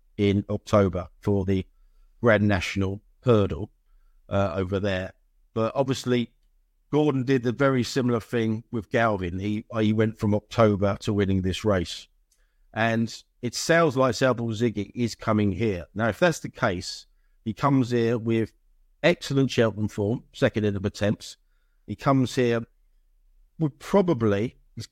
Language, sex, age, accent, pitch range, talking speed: English, male, 50-69, British, 100-120 Hz, 140 wpm